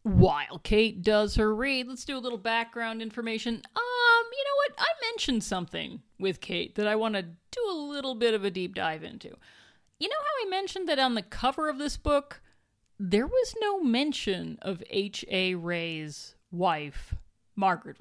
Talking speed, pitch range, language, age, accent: 180 wpm, 190-270 Hz, English, 40-59, American